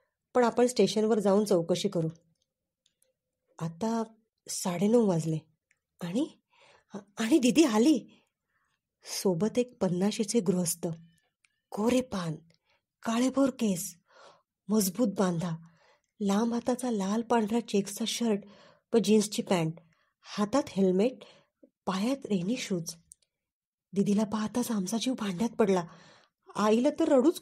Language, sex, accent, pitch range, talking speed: Marathi, female, native, 180-235 Hz, 95 wpm